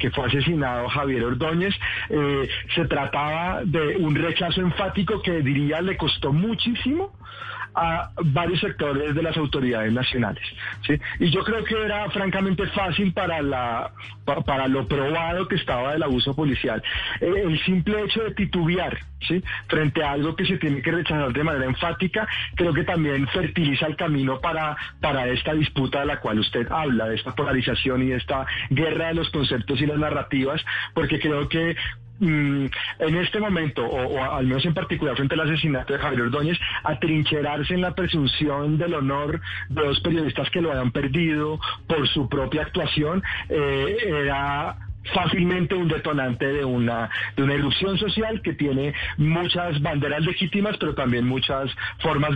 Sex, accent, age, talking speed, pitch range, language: male, Colombian, 40-59, 165 wpm, 135-170 Hz, Spanish